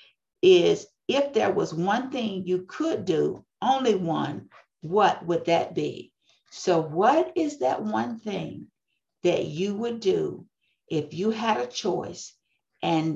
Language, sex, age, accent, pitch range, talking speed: English, female, 50-69, American, 170-255 Hz, 140 wpm